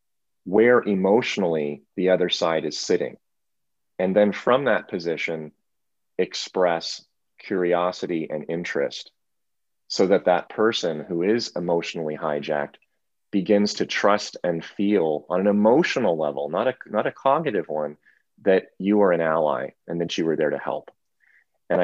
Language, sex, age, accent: English, male, 30-49, American